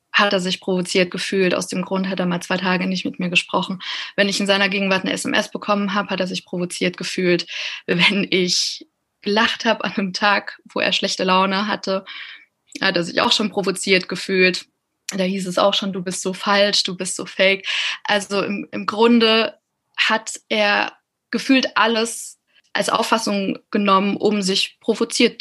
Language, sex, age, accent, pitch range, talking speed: German, female, 20-39, German, 190-225 Hz, 180 wpm